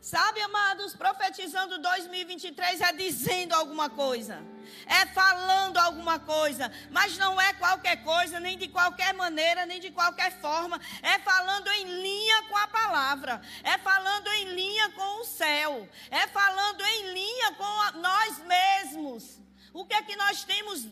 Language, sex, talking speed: Portuguese, female, 150 wpm